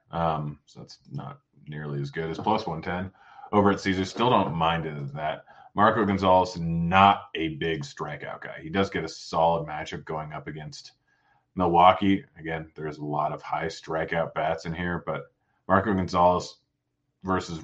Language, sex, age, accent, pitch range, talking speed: English, male, 30-49, American, 80-95 Hz, 175 wpm